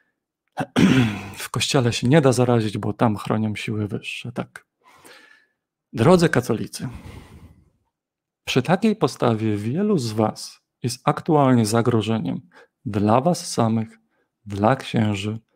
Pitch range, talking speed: 115-150 Hz, 110 wpm